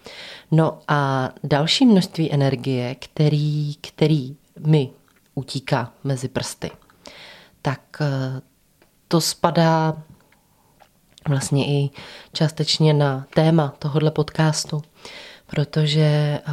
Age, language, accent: 30-49, Czech, native